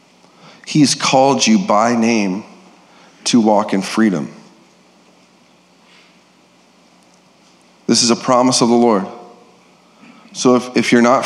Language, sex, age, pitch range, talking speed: English, male, 40-59, 105-140 Hz, 110 wpm